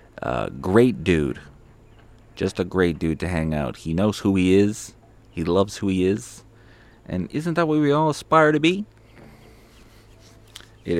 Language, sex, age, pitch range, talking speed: English, male, 30-49, 90-115 Hz, 165 wpm